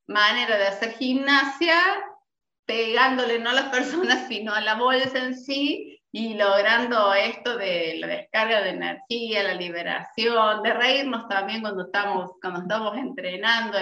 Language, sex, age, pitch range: Spanish, female, 30-49, 200-265 Hz